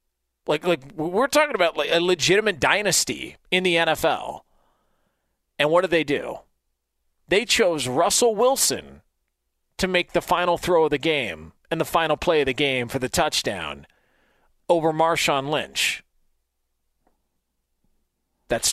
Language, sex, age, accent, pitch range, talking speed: English, male, 40-59, American, 150-200 Hz, 140 wpm